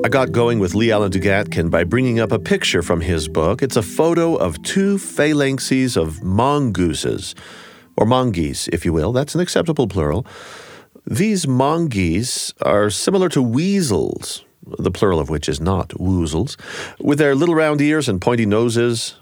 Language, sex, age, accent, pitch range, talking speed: English, male, 40-59, American, 95-140 Hz, 165 wpm